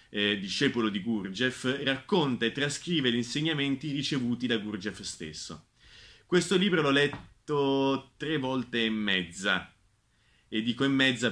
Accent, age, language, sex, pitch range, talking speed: native, 30-49, Italian, male, 110-140 Hz, 135 wpm